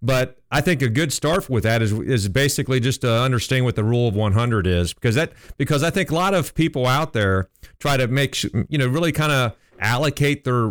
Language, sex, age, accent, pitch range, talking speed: English, male, 40-59, American, 110-140 Hz, 230 wpm